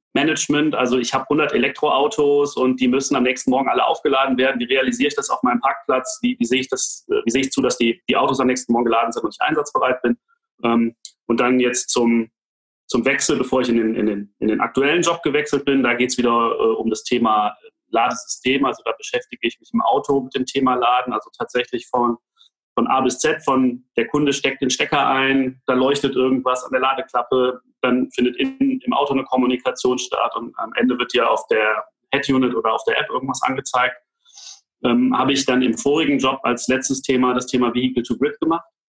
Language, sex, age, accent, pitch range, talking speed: German, male, 30-49, German, 125-145 Hz, 200 wpm